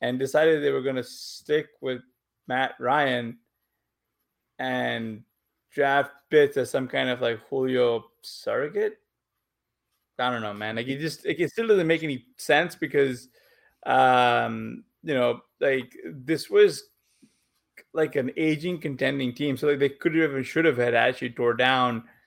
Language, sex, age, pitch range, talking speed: English, male, 20-39, 120-150 Hz, 155 wpm